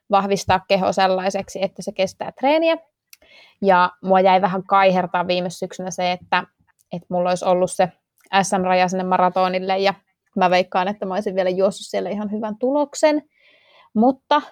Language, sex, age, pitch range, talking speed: Finnish, female, 20-39, 180-210 Hz, 155 wpm